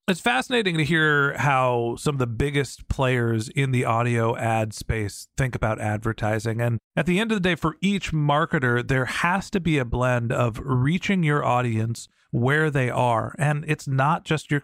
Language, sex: English, male